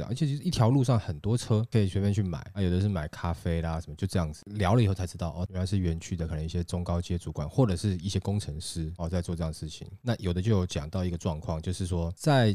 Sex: male